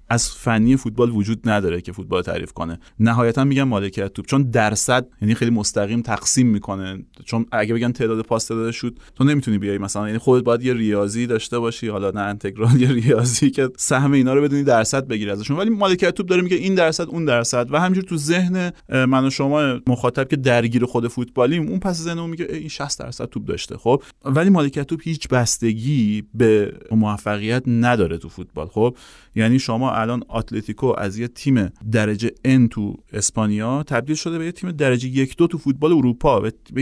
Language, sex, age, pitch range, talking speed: Persian, male, 30-49, 115-145 Hz, 190 wpm